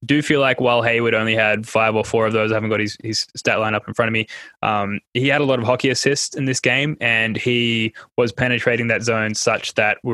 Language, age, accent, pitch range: English, 10-29, Australian, 110-130 Hz